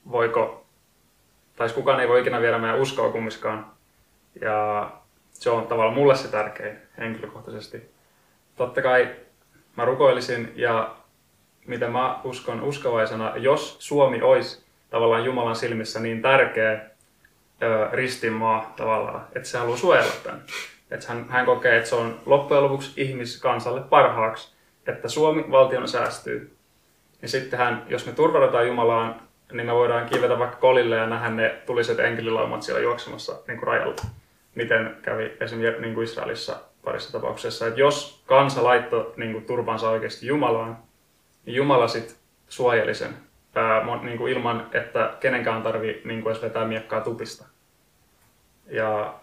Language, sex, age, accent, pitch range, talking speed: Finnish, male, 20-39, native, 110-135 Hz, 135 wpm